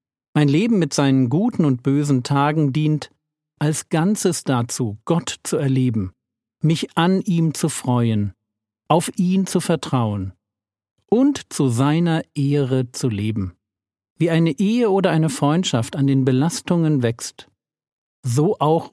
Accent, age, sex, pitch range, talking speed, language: German, 50-69, male, 125-175 Hz, 135 wpm, German